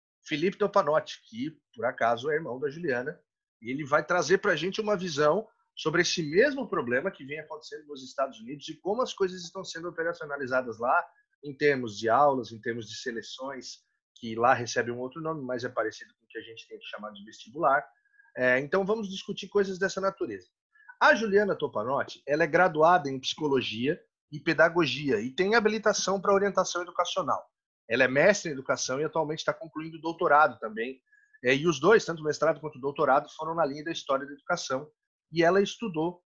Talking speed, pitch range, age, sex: 190 wpm, 140-200 Hz, 30-49, male